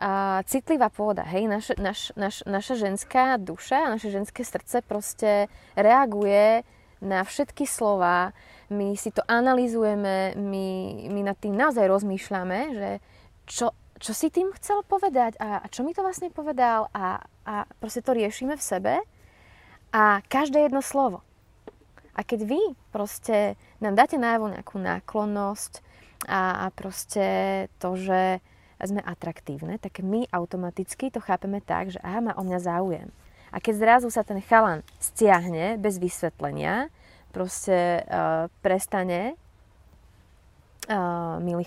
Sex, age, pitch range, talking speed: female, 20-39, 185-240 Hz, 140 wpm